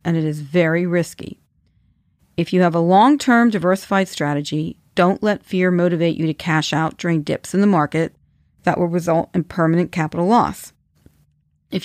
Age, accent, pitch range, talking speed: 40-59, American, 160-190 Hz, 165 wpm